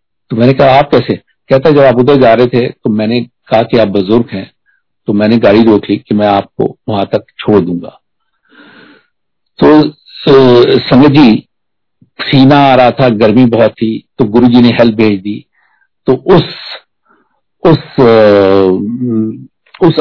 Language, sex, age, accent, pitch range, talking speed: Hindi, male, 50-69, native, 110-140 Hz, 140 wpm